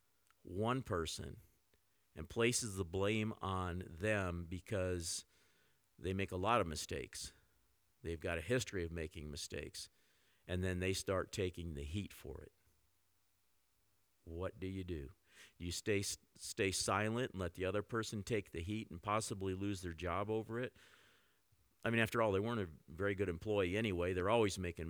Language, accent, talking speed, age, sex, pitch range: English, American, 165 wpm, 50-69, male, 85-100 Hz